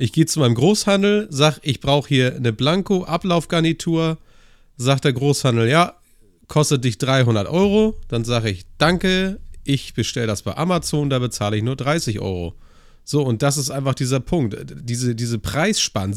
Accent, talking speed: German, 165 wpm